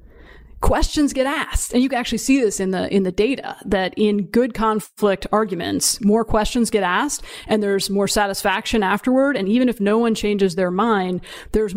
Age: 30-49